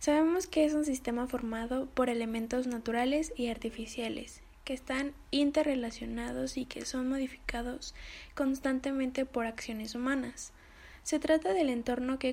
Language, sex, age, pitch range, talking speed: Spanish, female, 20-39, 230-270 Hz, 130 wpm